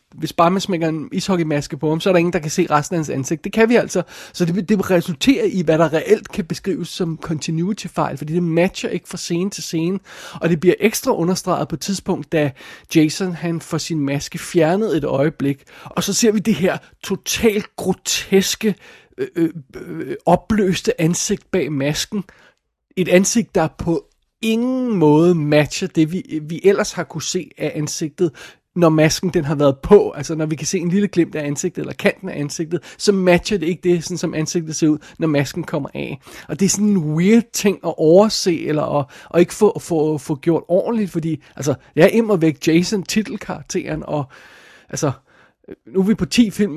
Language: Danish